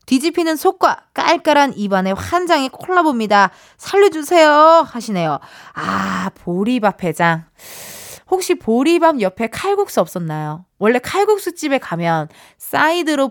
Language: Korean